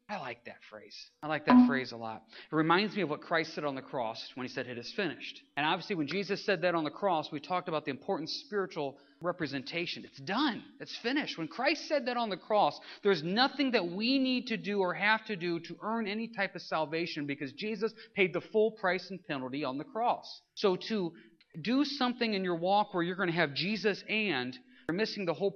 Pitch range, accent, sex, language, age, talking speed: 155-210 Hz, American, male, English, 40-59, 230 wpm